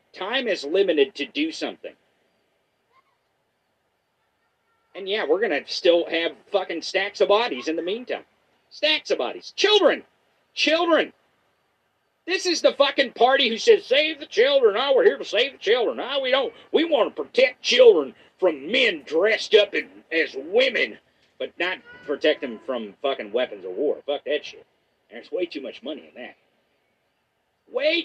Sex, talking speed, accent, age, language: male, 165 wpm, American, 50-69, English